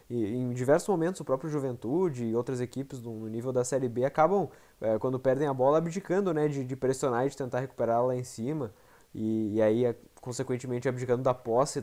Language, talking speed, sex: Portuguese, 205 wpm, male